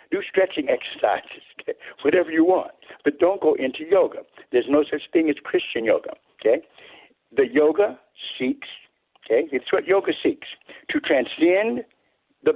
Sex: male